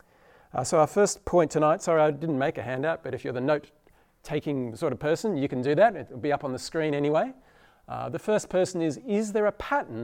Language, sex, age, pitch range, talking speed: English, male, 40-59, 145-200 Hz, 240 wpm